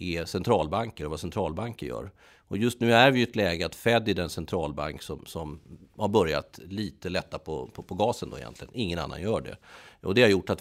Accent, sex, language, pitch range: native, male, Swedish, 85-115 Hz